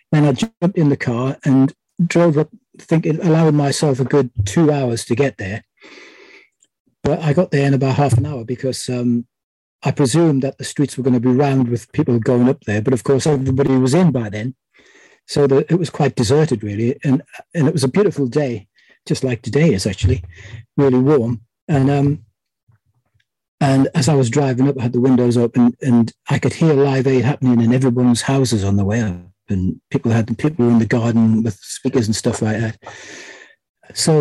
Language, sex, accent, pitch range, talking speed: English, male, British, 120-145 Hz, 205 wpm